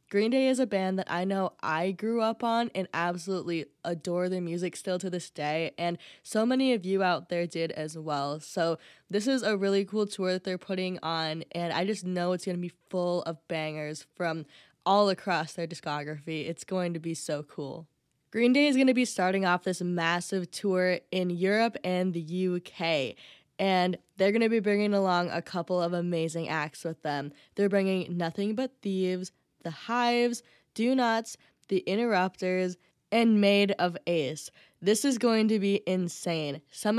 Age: 10-29